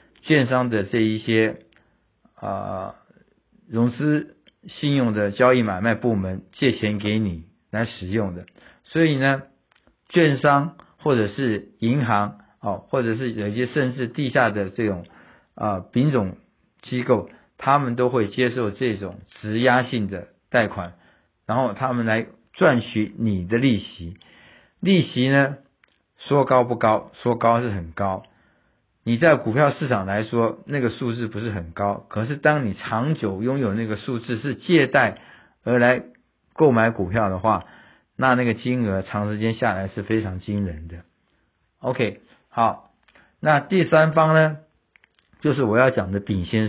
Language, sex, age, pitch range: Chinese, male, 50-69, 105-135 Hz